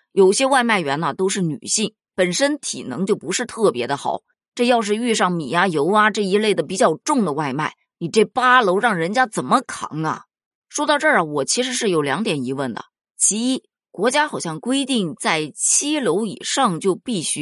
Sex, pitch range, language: female, 170-240 Hz, Chinese